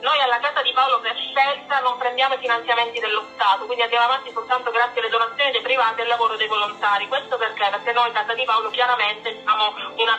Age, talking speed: 40-59, 225 wpm